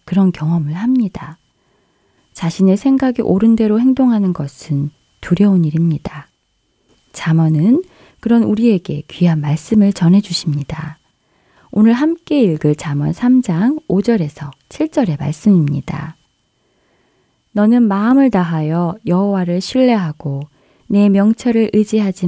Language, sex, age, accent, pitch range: Korean, female, 20-39, native, 155-225 Hz